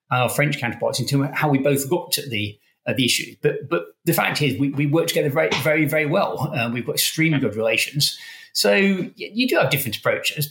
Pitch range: 125-150 Hz